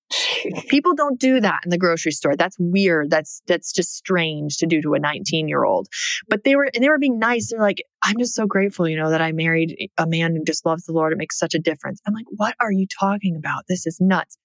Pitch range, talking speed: 160-200 Hz, 260 wpm